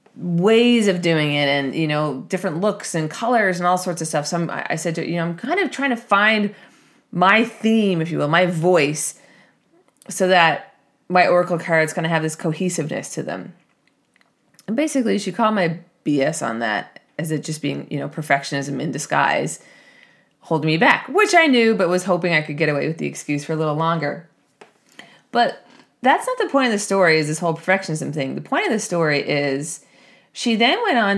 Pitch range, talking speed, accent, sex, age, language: 155-200 Hz, 210 wpm, American, female, 20-39, English